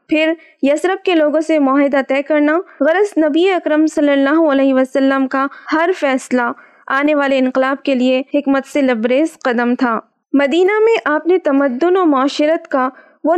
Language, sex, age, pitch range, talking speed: Urdu, female, 20-39, 270-320 Hz, 165 wpm